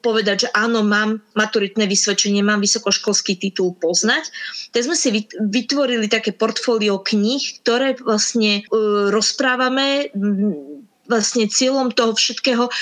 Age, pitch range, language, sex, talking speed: 20-39, 205-245 Hz, Slovak, female, 110 wpm